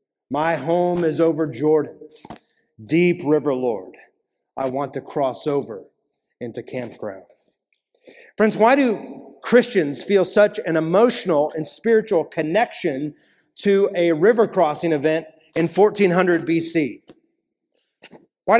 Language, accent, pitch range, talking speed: English, American, 165-220 Hz, 115 wpm